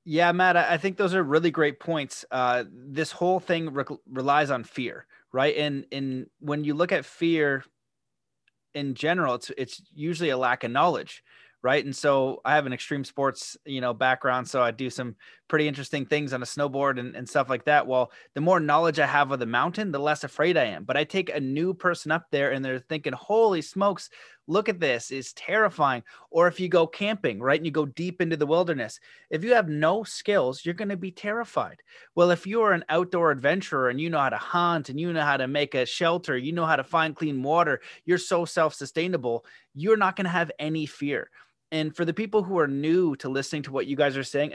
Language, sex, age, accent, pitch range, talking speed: English, male, 30-49, American, 135-175 Hz, 225 wpm